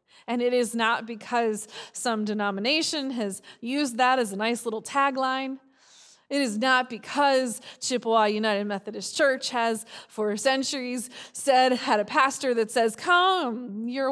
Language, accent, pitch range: English, American, 195-240 Hz